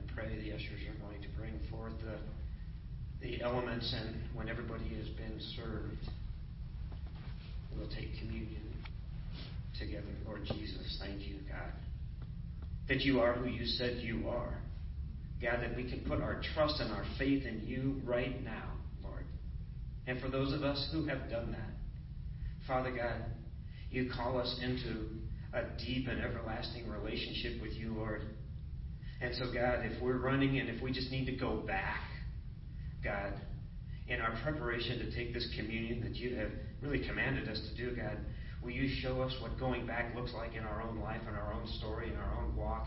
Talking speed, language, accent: 175 wpm, English, American